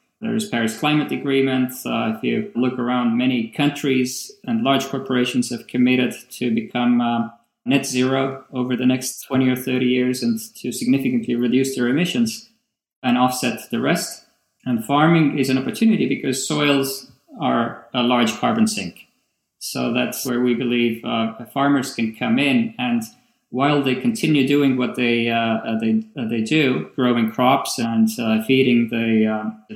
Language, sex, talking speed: English, male, 165 wpm